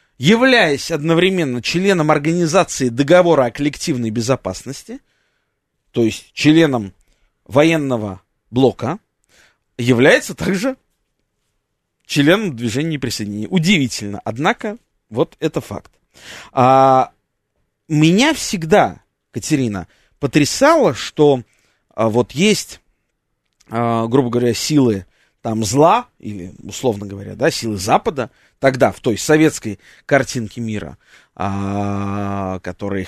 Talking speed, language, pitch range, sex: 95 wpm, Russian, 105-165 Hz, male